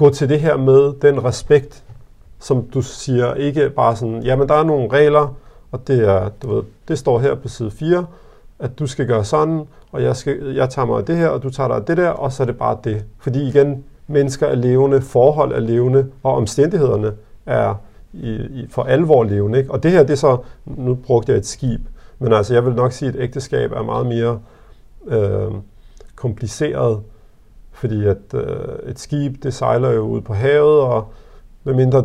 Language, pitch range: Danish, 110-135 Hz